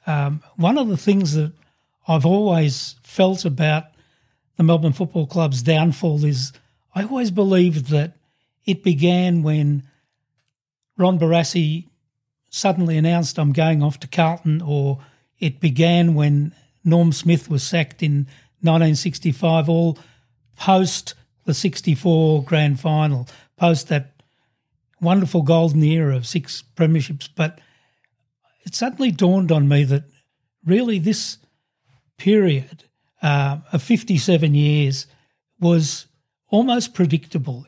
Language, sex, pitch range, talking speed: English, male, 140-170 Hz, 115 wpm